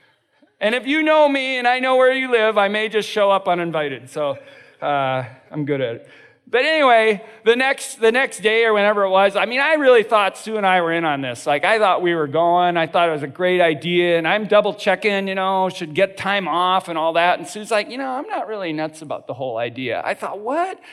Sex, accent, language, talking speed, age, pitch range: male, American, English, 250 wpm, 40-59, 170-240 Hz